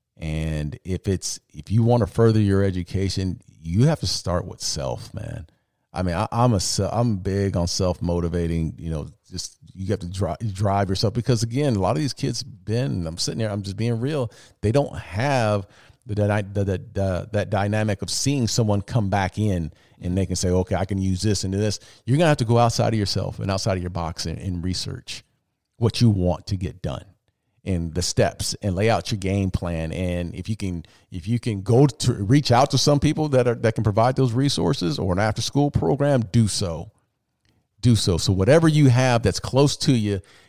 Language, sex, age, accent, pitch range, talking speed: English, male, 40-59, American, 95-120 Hz, 220 wpm